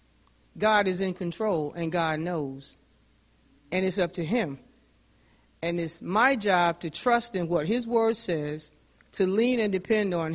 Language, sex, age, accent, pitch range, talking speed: English, female, 50-69, American, 165-220 Hz, 160 wpm